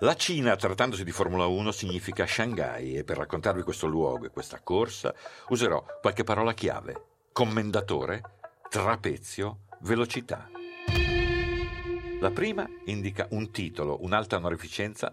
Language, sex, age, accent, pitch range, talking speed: Italian, male, 50-69, native, 80-115 Hz, 120 wpm